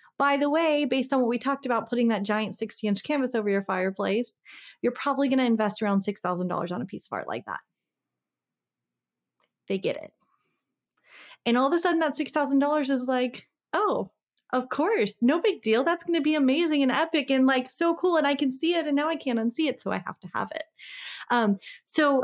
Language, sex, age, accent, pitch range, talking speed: English, female, 20-39, American, 195-275 Hz, 215 wpm